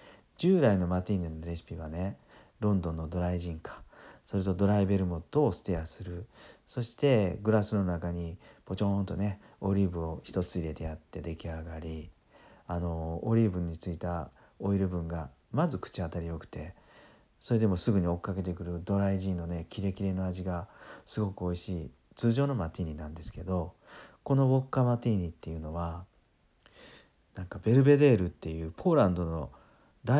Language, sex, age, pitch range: Japanese, male, 40-59, 85-105 Hz